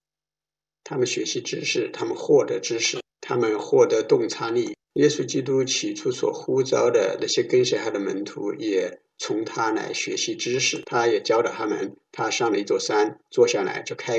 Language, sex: English, male